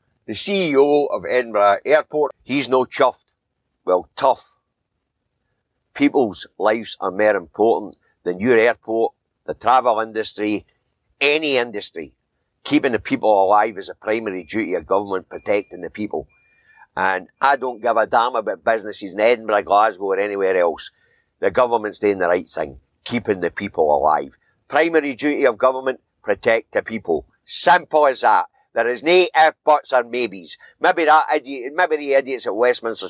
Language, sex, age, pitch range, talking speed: English, male, 50-69, 105-145 Hz, 155 wpm